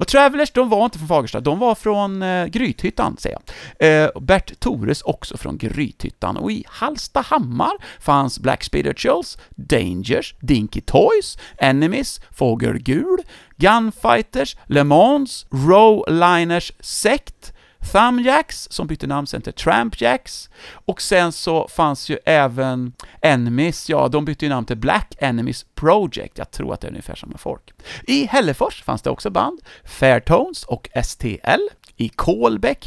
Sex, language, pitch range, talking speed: male, English, 130-210 Hz, 140 wpm